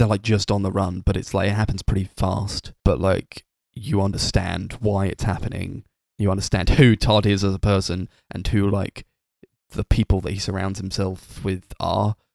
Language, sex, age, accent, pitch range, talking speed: English, male, 10-29, British, 95-110 Hz, 190 wpm